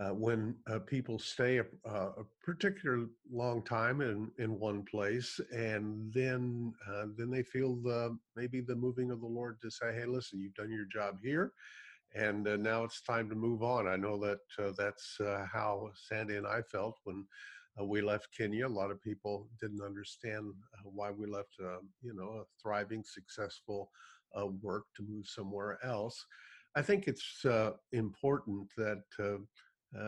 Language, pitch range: English, 105-120 Hz